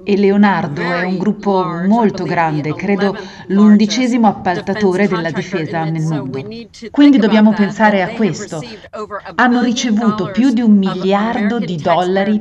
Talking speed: 130 wpm